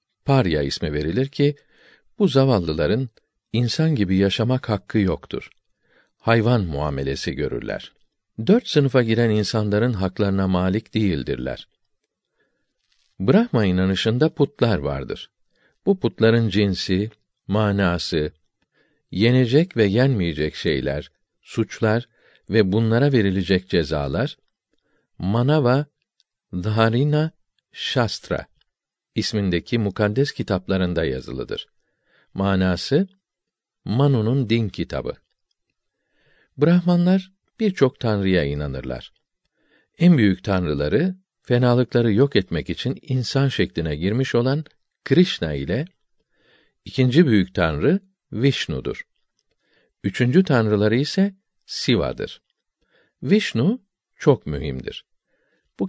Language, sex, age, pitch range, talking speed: Turkish, male, 50-69, 95-140 Hz, 85 wpm